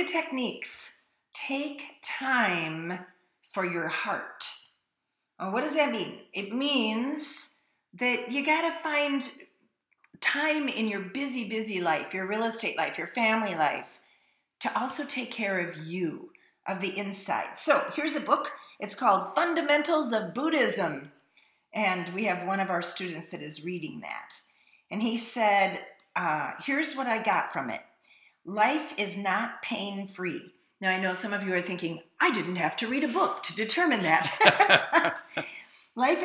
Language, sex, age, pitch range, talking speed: English, female, 40-59, 185-290 Hz, 150 wpm